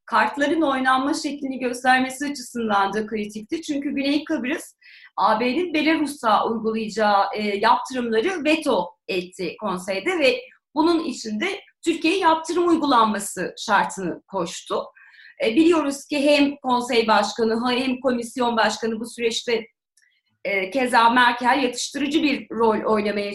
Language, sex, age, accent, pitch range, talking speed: Turkish, female, 30-49, native, 220-295 Hz, 105 wpm